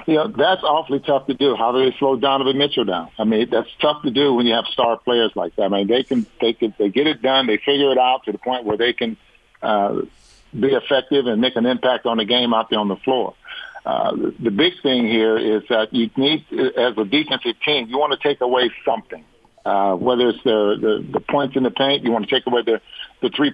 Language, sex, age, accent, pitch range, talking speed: English, male, 50-69, American, 110-135 Hz, 250 wpm